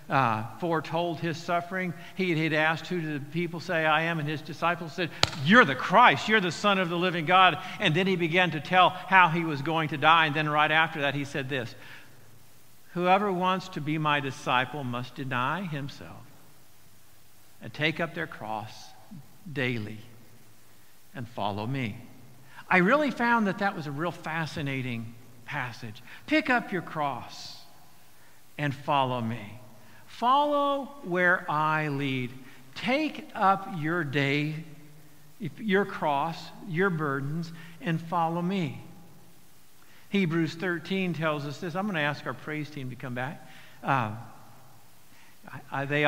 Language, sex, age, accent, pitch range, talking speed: English, male, 50-69, American, 125-170 Hz, 150 wpm